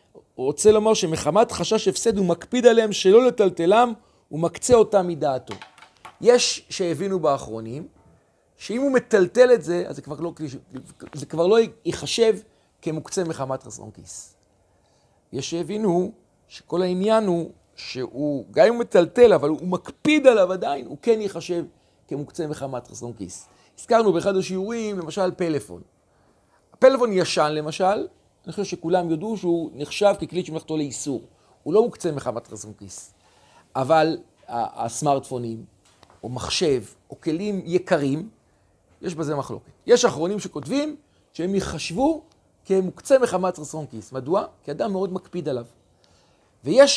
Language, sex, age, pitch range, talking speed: Hebrew, male, 40-59, 140-210 Hz, 135 wpm